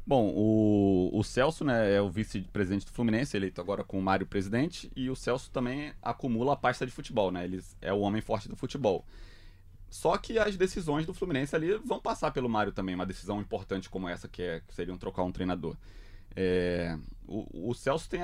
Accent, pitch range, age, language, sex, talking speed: Brazilian, 95-125 Hz, 20-39, Portuguese, male, 195 wpm